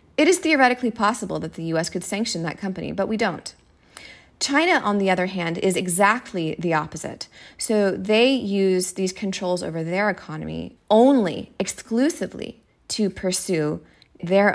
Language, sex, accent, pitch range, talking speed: English, female, American, 160-195 Hz, 150 wpm